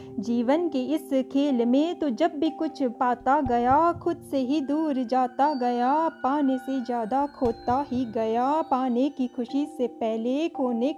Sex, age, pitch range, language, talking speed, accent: female, 30-49, 245-295 Hz, Hindi, 160 wpm, native